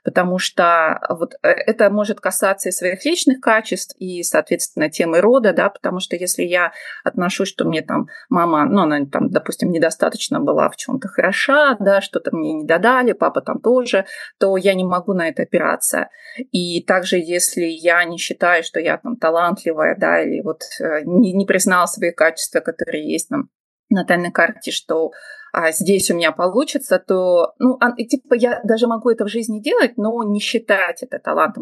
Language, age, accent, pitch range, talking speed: Russian, 20-39, native, 175-250 Hz, 175 wpm